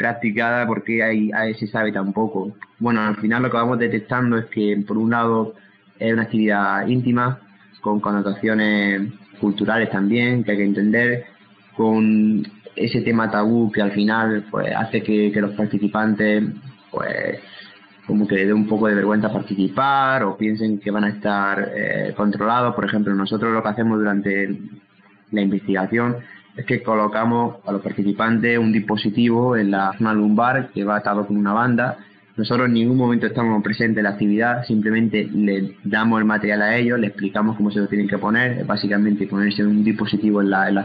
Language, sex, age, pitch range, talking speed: Spanish, male, 20-39, 100-120 Hz, 180 wpm